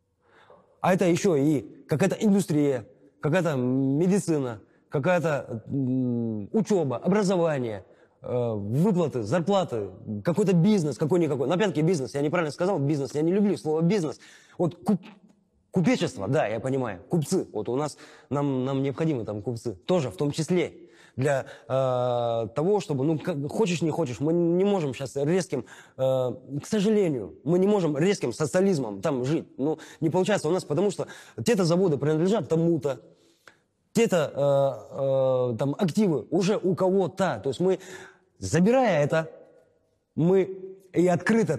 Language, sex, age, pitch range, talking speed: Russian, male, 20-39, 135-185 Hz, 140 wpm